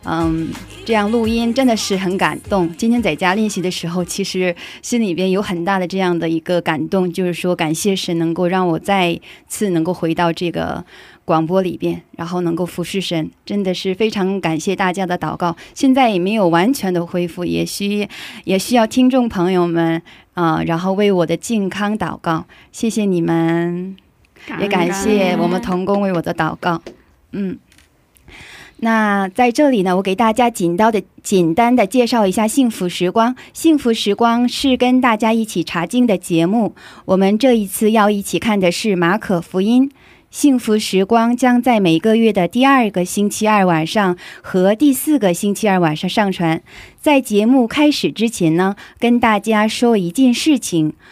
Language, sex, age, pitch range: Korean, female, 20-39, 175-230 Hz